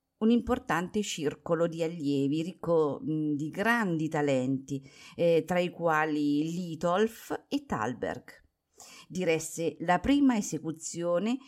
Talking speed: 105 wpm